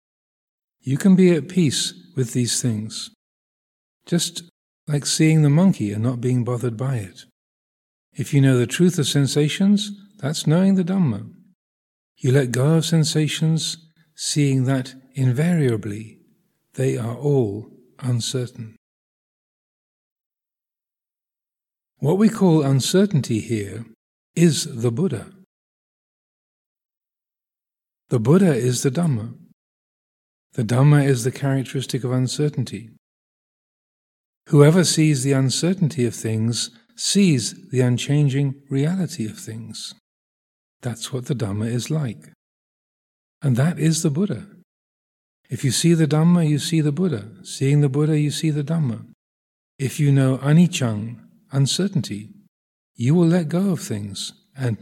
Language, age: English, 50-69